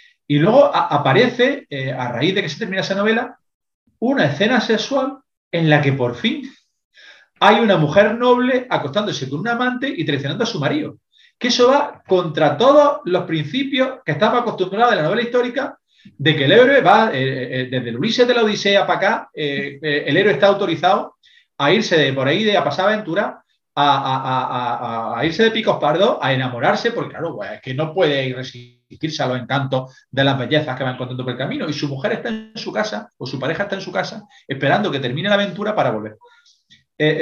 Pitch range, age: 140-220 Hz, 40-59